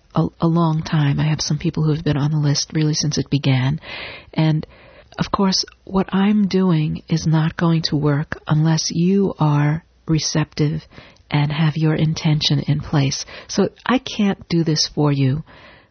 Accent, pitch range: American, 140-160 Hz